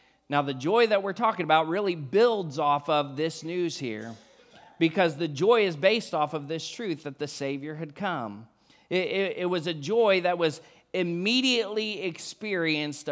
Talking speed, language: 170 wpm, English